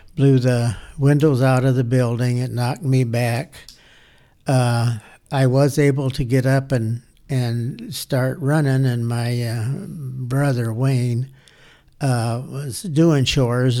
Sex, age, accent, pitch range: male, 60-79, American, 120-140 Hz